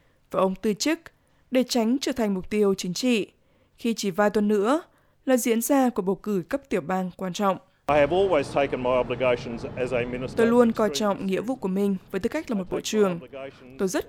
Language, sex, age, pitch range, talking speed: Vietnamese, female, 20-39, 190-240 Hz, 190 wpm